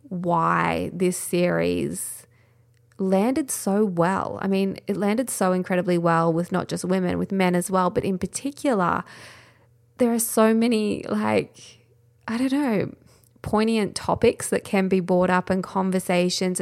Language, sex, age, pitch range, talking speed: English, female, 20-39, 175-200 Hz, 150 wpm